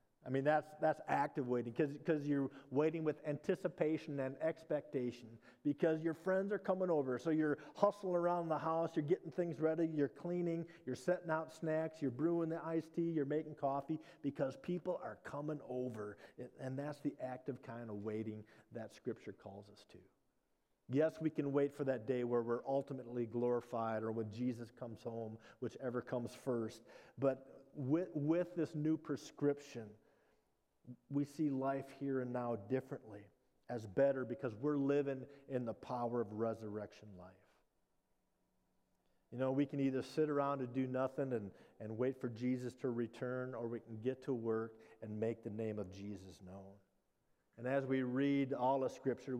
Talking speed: 170 wpm